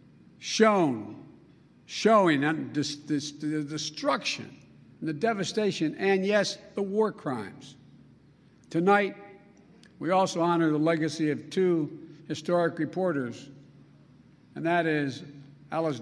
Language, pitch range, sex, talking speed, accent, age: English, 150-180 Hz, male, 105 wpm, American, 60-79